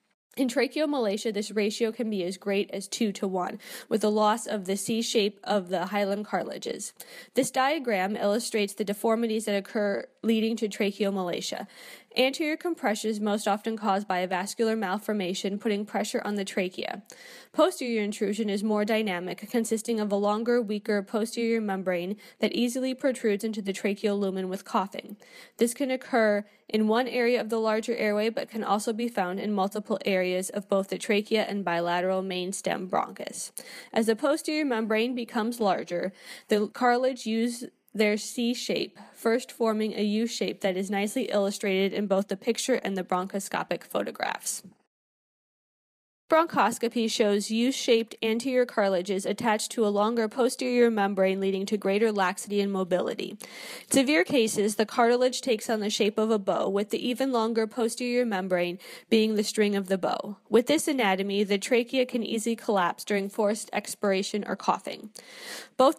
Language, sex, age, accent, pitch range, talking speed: English, female, 10-29, American, 200-235 Hz, 165 wpm